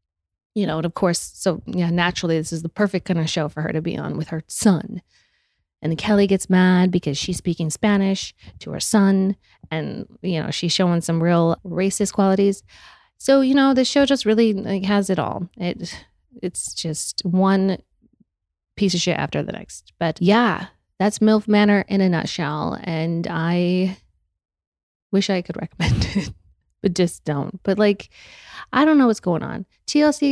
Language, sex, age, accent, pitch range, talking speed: English, female, 30-49, American, 160-205 Hz, 180 wpm